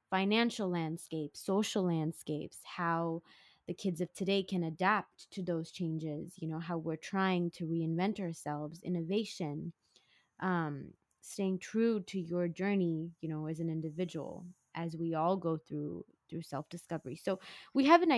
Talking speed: 145 wpm